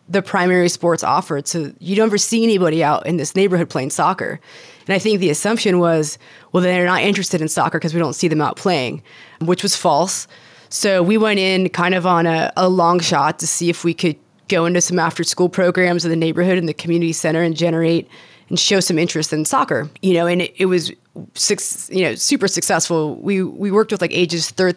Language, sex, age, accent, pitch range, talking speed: English, female, 20-39, American, 165-190 Hz, 225 wpm